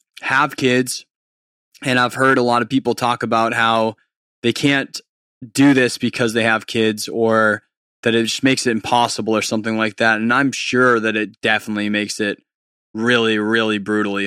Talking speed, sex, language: 175 wpm, male, English